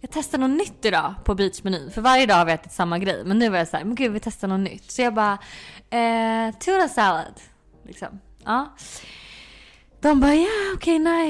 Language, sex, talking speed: Swedish, female, 210 wpm